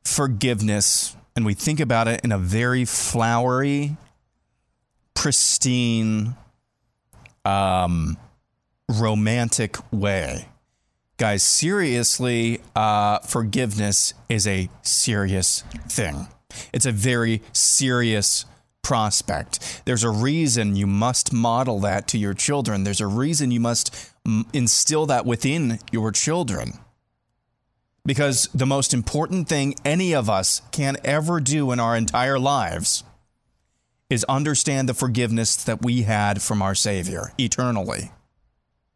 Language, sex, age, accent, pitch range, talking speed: English, male, 30-49, American, 110-130 Hz, 110 wpm